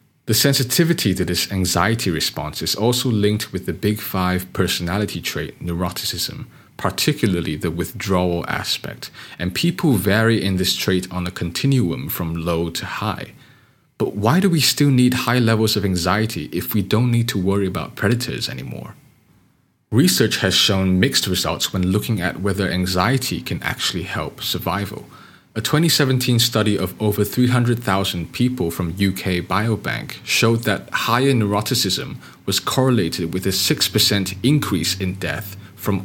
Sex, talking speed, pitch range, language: male, 150 wpm, 90-120 Hz, English